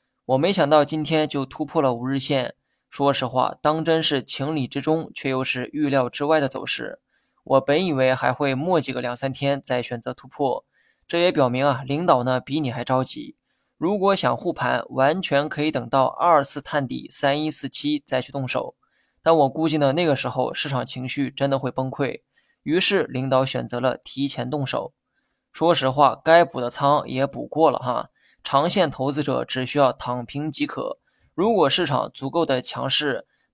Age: 20-39